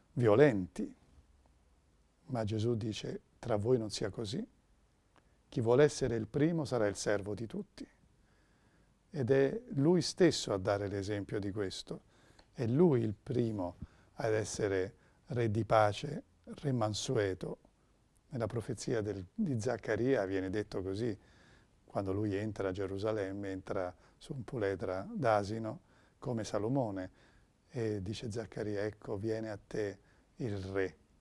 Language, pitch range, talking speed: Italian, 95-120 Hz, 130 wpm